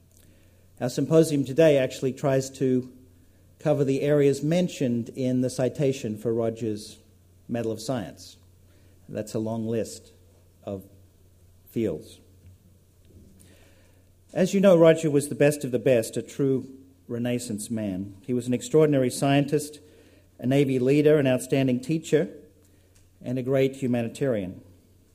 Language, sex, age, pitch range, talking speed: English, male, 50-69, 95-135 Hz, 125 wpm